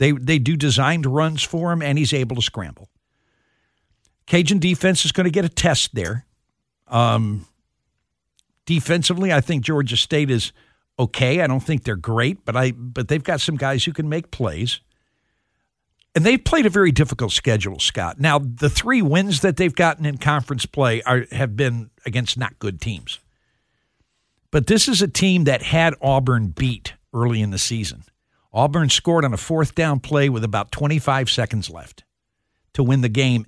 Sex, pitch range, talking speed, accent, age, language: male, 115-155 Hz, 175 wpm, American, 60-79, English